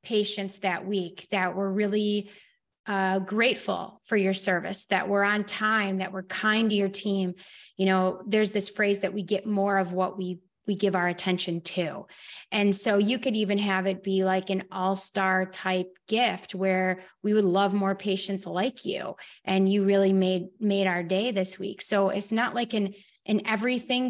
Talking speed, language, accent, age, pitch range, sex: 185 wpm, English, American, 20-39, 190-215 Hz, female